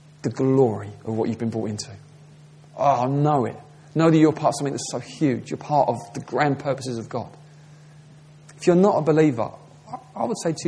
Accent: British